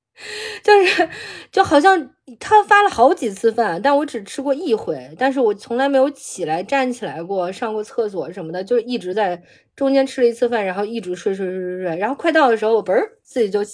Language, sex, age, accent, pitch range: Chinese, female, 20-39, native, 225-335 Hz